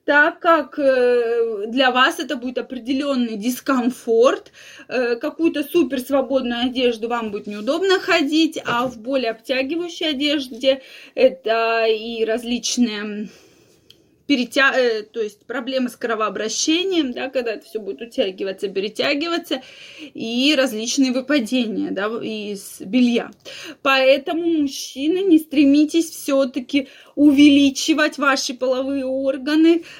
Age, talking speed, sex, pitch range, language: 20-39, 105 wpm, female, 240-310 Hz, Russian